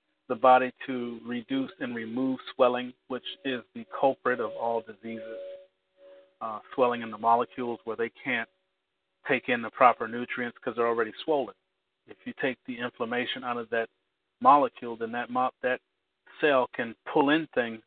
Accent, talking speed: American, 160 wpm